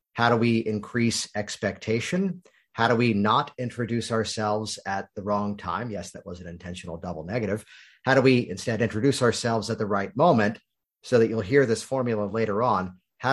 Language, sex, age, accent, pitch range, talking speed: English, male, 40-59, American, 100-125 Hz, 185 wpm